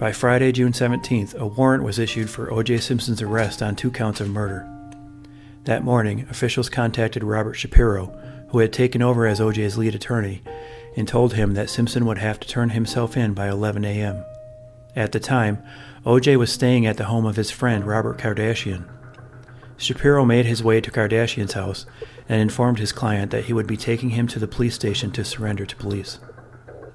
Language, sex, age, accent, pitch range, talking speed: English, male, 40-59, American, 110-125 Hz, 185 wpm